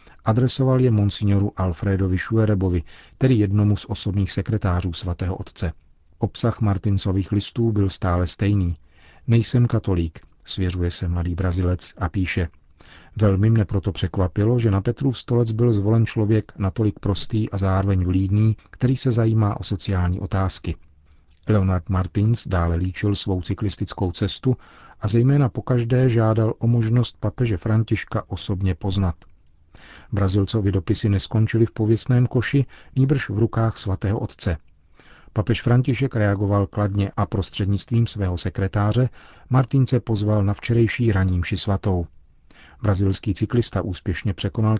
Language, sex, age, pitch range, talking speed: Czech, male, 40-59, 90-110 Hz, 130 wpm